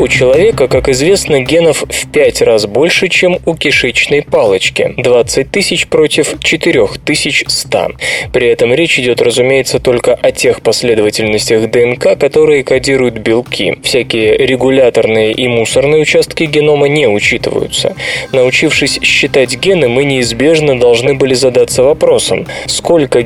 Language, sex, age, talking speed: Russian, male, 20-39, 130 wpm